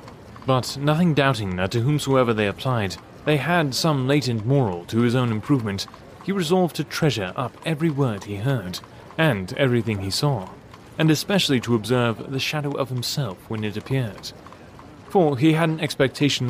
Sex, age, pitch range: male, 30-49, 110-150 Hz